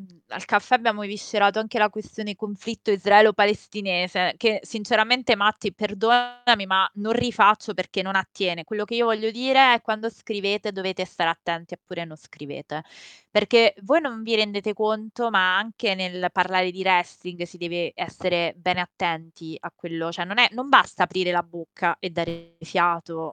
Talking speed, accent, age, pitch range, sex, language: 160 wpm, native, 20-39, 170-215 Hz, female, Italian